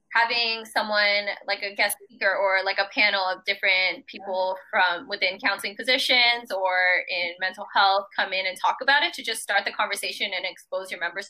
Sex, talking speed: female, 190 wpm